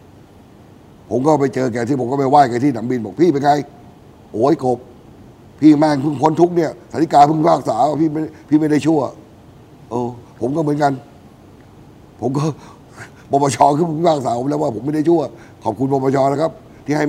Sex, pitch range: male, 125-155 Hz